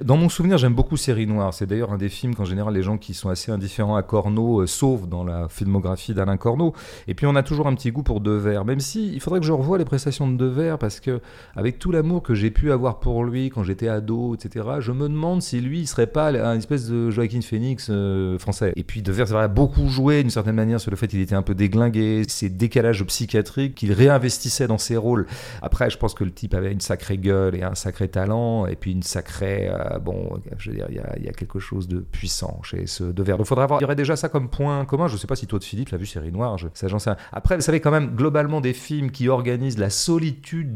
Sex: male